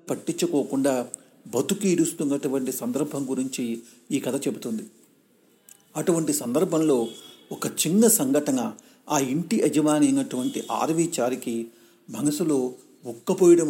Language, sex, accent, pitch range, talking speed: Telugu, male, native, 135-195 Hz, 90 wpm